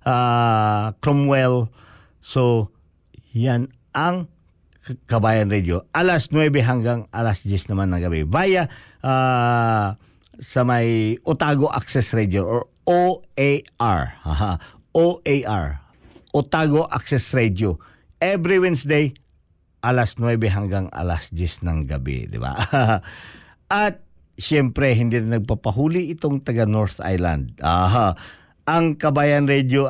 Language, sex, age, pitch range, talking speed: Filipino, male, 50-69, 110-155 Hz, 110 wpm